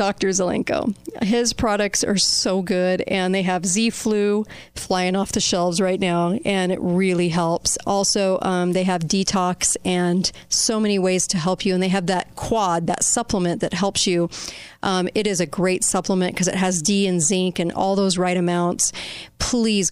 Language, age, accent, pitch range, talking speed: English, 40-59, American, 180-200 Hz, 185 wpm